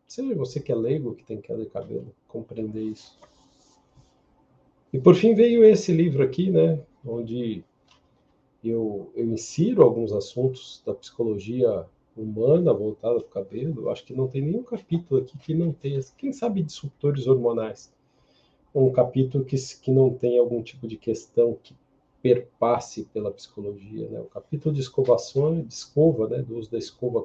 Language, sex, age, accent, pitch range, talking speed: Portuguese, male, 40-59, Brazilian, 115-140 Hz, 160 wpm